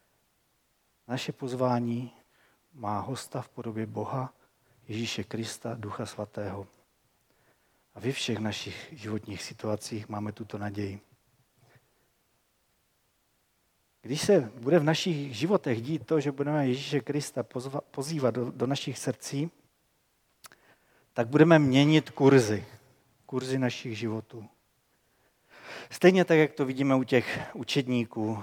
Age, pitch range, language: 40-59, 110-145 Hz, Czech